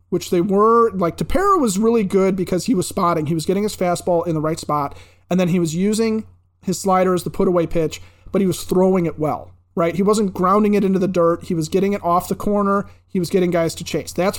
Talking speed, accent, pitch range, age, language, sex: 250 wpm, American, 160-205 Hz, 30-49, English, male